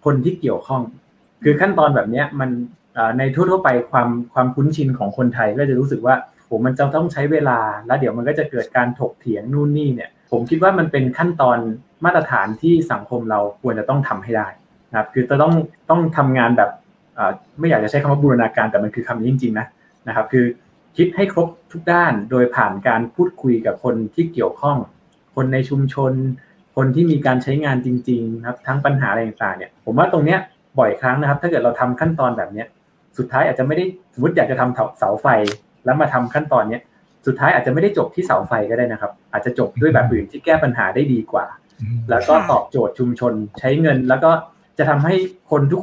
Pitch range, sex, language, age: 120-155 Hz, male, Thai, 20-39